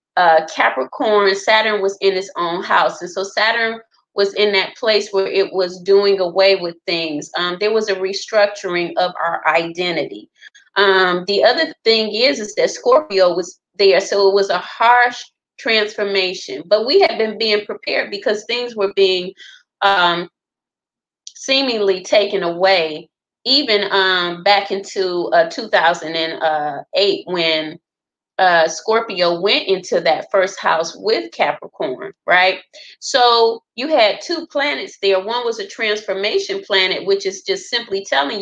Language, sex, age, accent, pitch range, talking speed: English, female, 30-49, American, 185-225 Hz, 145 wpm